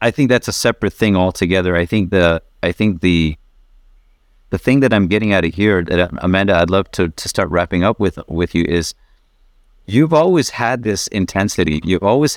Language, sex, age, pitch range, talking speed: English, male, 30-49, 90-105 Hz, 200 wpm